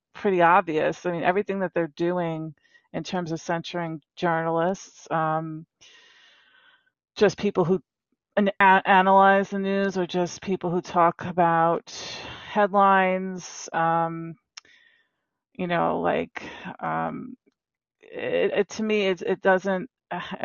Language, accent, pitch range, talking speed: English, American, 170-195 Hz, 110 wpm